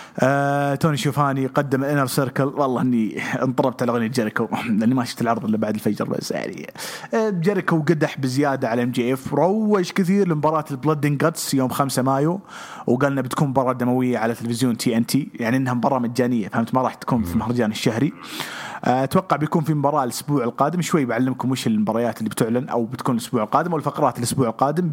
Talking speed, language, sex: 170 wpm, English, male